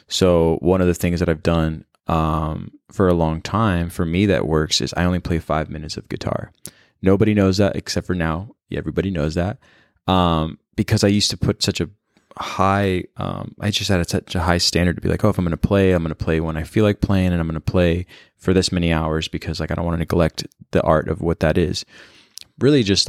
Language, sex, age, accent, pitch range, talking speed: English, male, 20-39, American, 85-100 Hz, 240 wpm